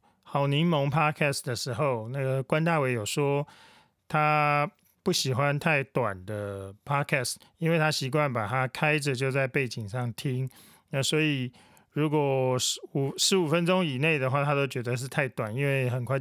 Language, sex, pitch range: Chinese, male, 130-155 Hz